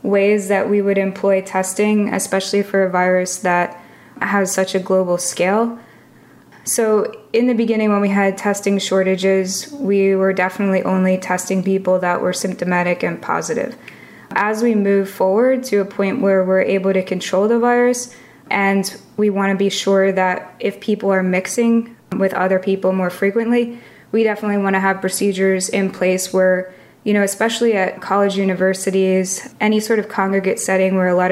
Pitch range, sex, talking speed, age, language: 190-210 Hz, female, 170 wpm, 20-39, English